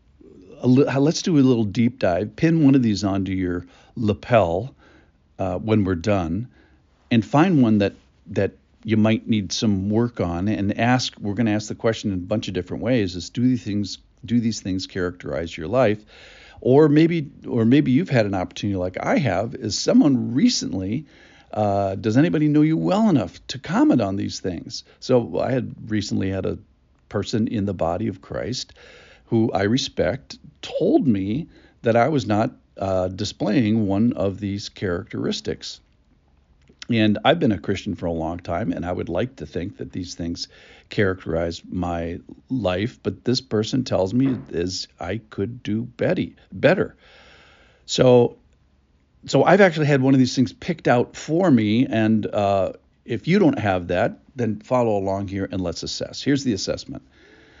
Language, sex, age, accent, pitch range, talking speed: English, male, 50-69, American, 95-125 Hz, 175 wpm